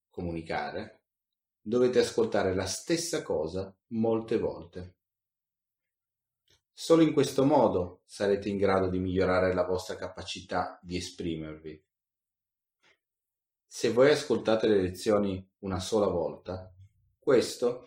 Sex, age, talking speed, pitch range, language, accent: male, 30-49, 105 wpm, 90-105 Hz, Italian, native